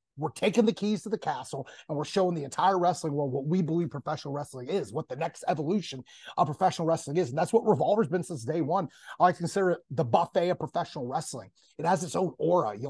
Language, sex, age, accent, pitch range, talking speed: English, male, 30-49, American, 155-190 Hz, 235 wpm